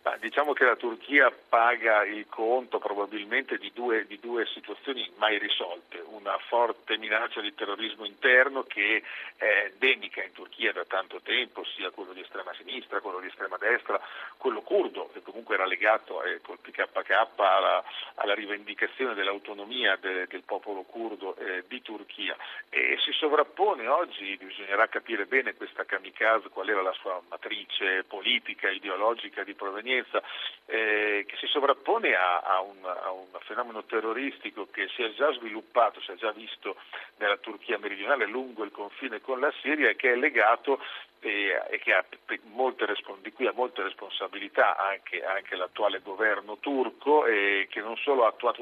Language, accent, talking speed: Italian, native, 160 wpm